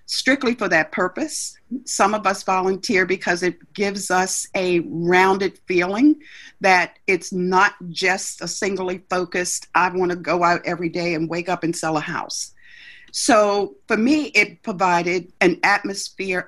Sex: female